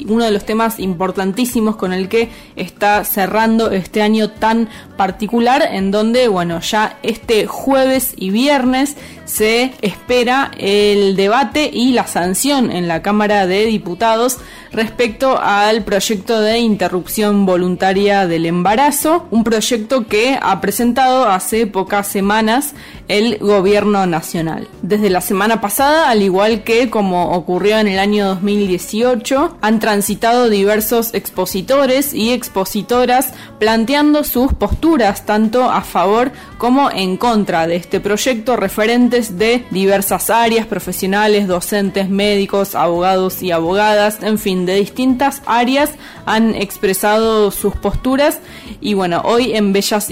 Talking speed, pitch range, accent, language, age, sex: 130 wpm, 195-245 Hz, Argentinian, Spanish, 20-39, female